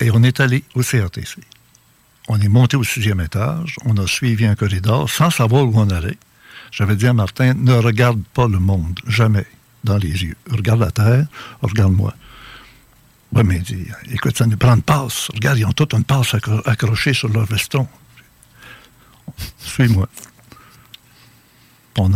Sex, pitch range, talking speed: male, 110-140 Hz, 170 wpm